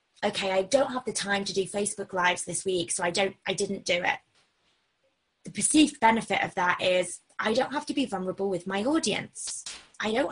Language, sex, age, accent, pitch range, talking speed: English, female, 20-39, British, 195-260 Hz, 210 wpm